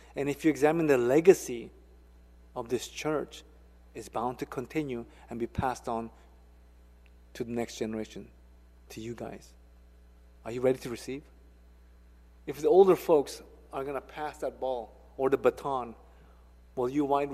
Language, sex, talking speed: English, male, 155 wpm